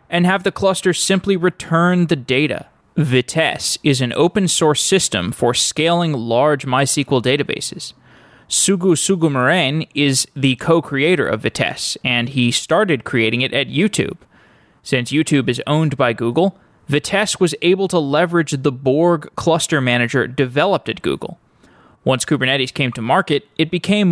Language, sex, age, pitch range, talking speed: English, male, 20-39, 130-165 Hz, 140 wpm